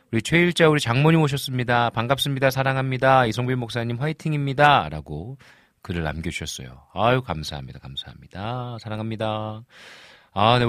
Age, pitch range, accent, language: 40-59, 80-130 Hz, native, Korean